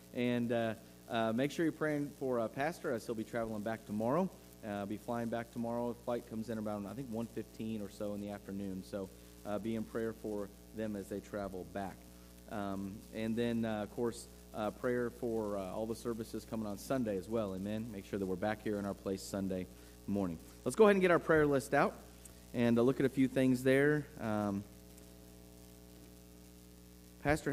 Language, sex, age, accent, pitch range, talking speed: English, male, 30-49, American, 95-115 Hz, 205 wpm